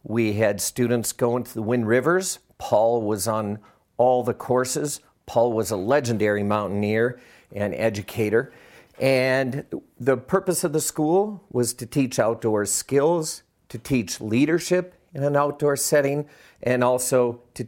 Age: 50-69